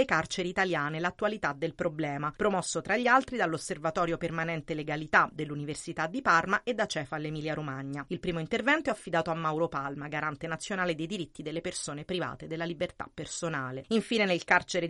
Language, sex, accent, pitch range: Italian, female, native, 160-205 Hz